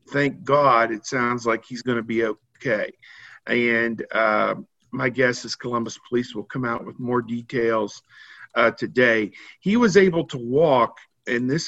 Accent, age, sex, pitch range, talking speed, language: American, 50-69, male, 120-140 Hz, 165 wpm, English